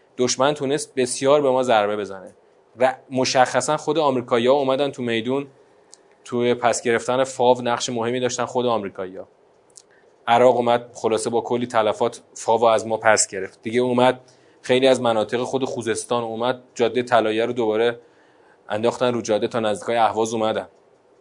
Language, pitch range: Persian, 120-145 Hz